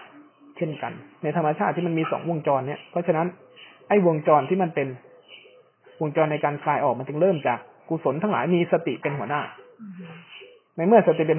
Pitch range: 155-200 Hz